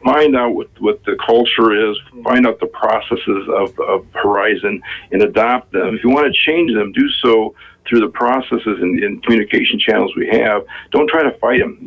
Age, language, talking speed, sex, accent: 50-69, English, 200 wpm, male, American